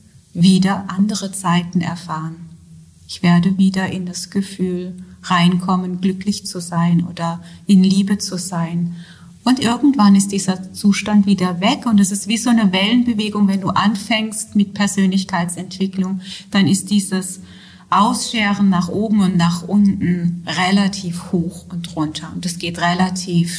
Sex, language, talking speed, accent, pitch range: female, German, 140 wpm, German, 175-200 Hz